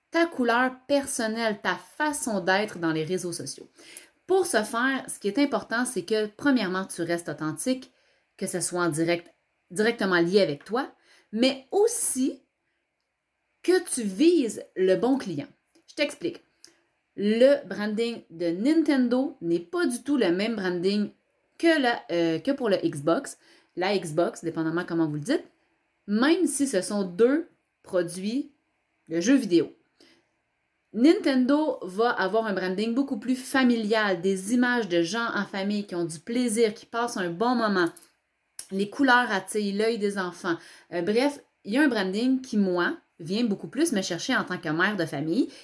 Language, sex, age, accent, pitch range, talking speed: French, female, 30-49, Canadian, 180-280 Hz, 160 wpm